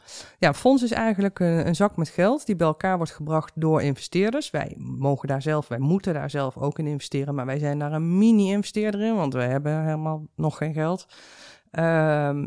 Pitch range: 145-190 Hz